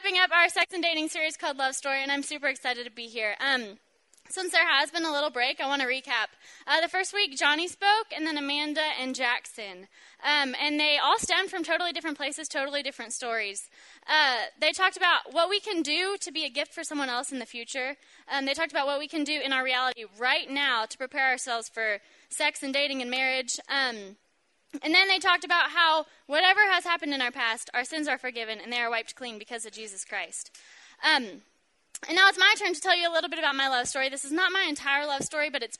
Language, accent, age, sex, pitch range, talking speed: English, American, 10-29, female, 255-325 Hz, 240 wpm